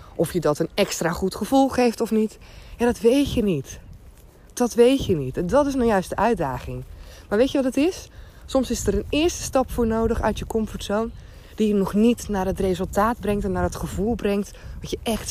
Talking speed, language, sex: 230 wpm, Dutch, female